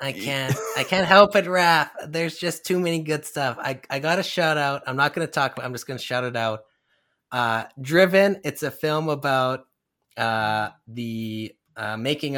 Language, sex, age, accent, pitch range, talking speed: English, male, 20-39, American, 115-145 Hz, 205 wpm